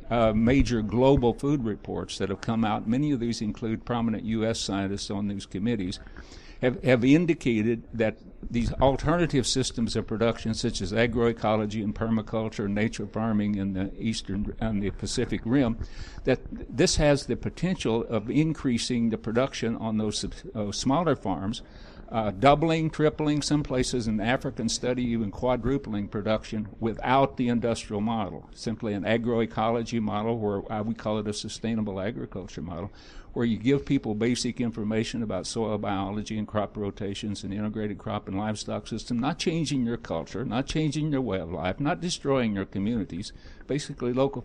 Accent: American